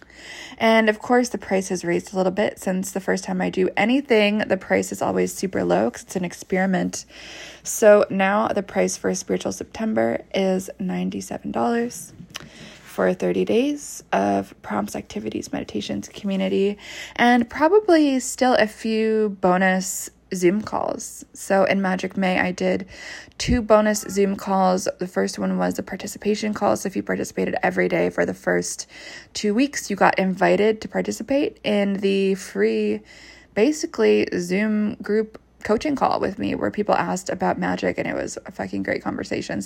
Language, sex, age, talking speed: English, female, 20-39, 160 wpm